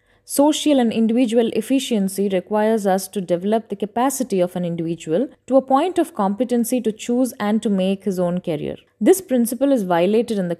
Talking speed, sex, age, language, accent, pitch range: 180 wpm, female, 20-39, Tamil, native, 190-255 Hz